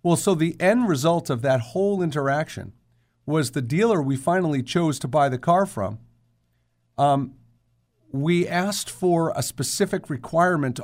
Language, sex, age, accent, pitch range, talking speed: English, male, 50-69, American, 120-190 Hz, 150 wpm